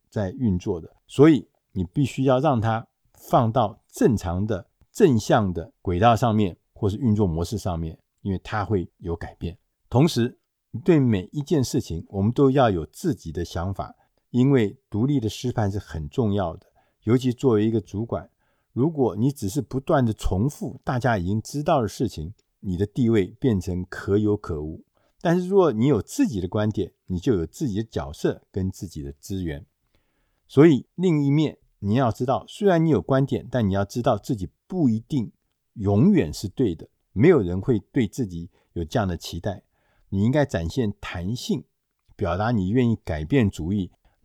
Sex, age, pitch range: male, 50-69, 95-130 Hz